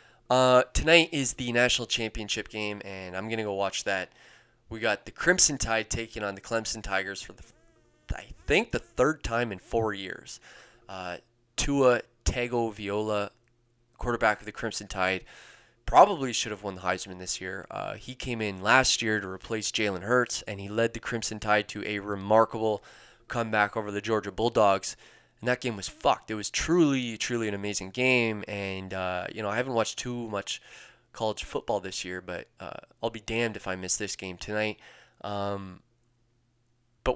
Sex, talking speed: male, 180 wpm